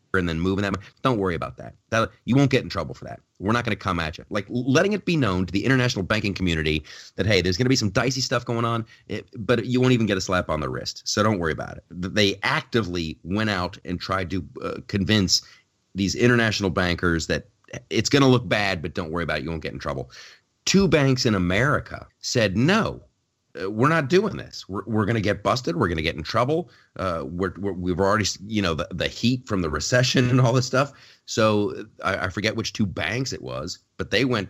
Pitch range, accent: 90-125 Hz, American